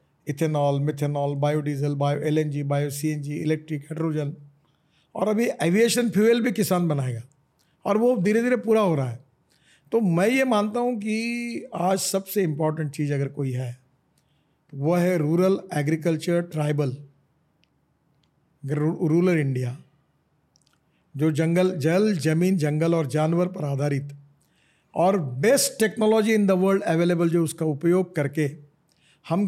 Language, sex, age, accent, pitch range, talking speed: Hindi, male, 50-69, native, 150-190 Hz, 135 wpm